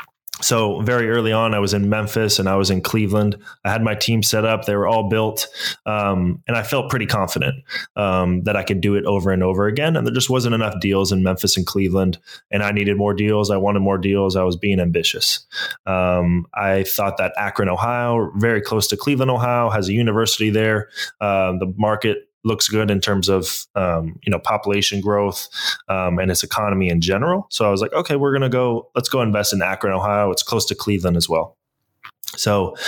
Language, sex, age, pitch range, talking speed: English, male, 20-39, 95-115 Hz, 215 wpm